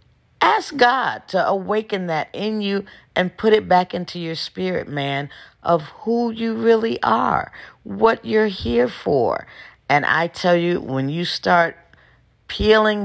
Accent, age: American, 40-59